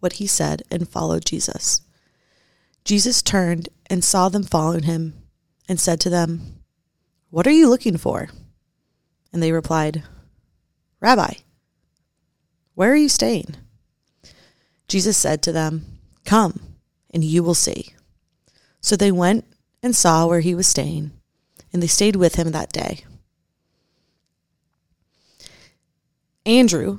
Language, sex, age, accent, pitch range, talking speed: English, female, 30-49, American, 165-195 Hz, 125 wpm